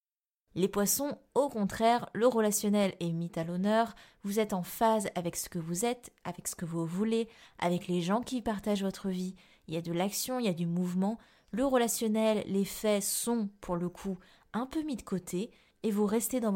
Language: French